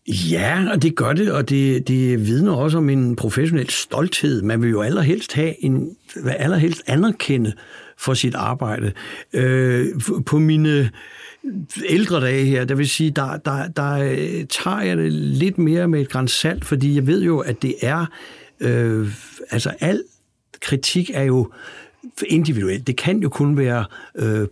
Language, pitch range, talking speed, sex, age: Danish, 120-155 Hz, 165 wpm, male, 60-79